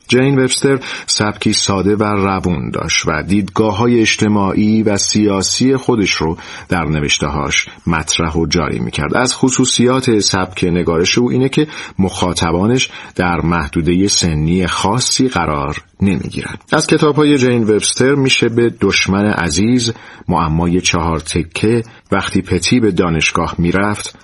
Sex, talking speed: male, 125 wpm